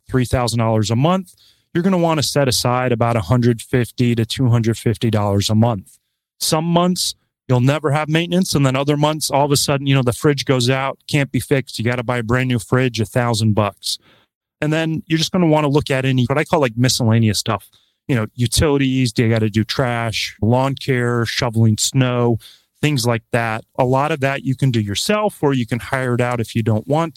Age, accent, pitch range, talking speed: 30-49, American, 115-140 Hz, 240 wpm